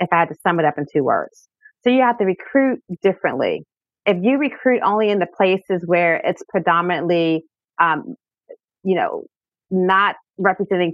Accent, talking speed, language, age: American, 170 wpm, English, 30-49